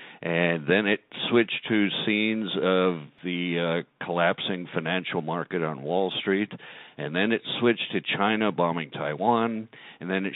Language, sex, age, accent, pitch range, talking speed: English, male, 60-79, American, 85-105 Hz, 150 wpm